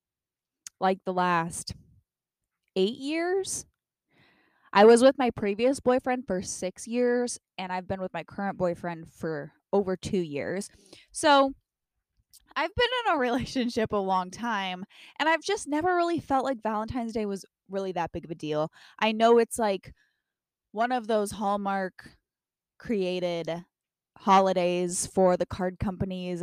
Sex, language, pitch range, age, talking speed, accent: female, English, 185-255 Hz, 10-29, 145 wpm, American